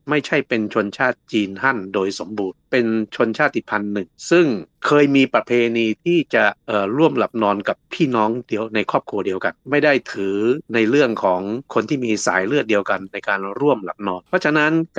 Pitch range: 100-130 Hz